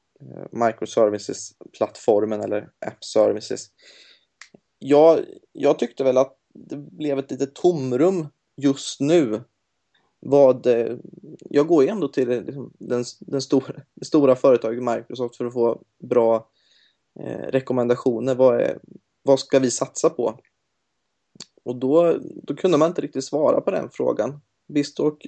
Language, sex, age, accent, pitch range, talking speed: English, male, 20-39, Swedish, 120-150 Hz, 125 wpm